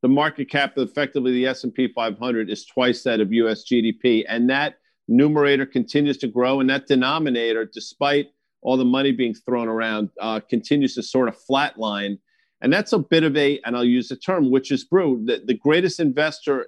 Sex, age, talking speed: male, 50-69, 195 wpm